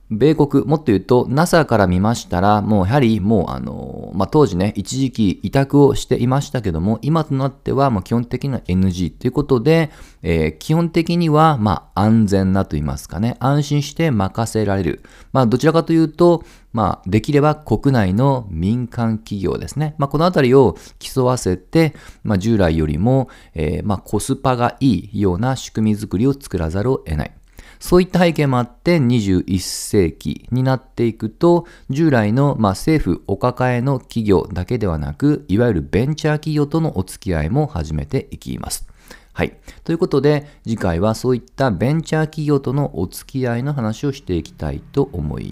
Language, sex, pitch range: Japanese, male, 100-145 Hz